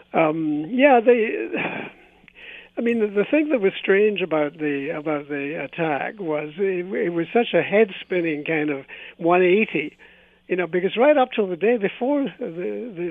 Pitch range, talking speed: 155-195 Hz, 175 wpm